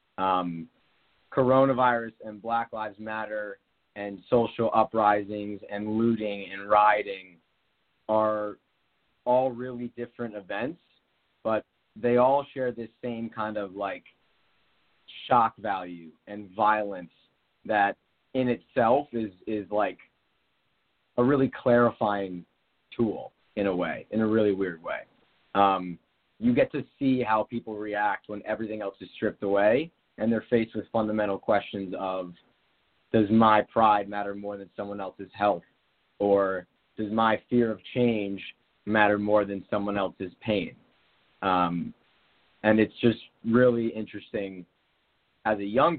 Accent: American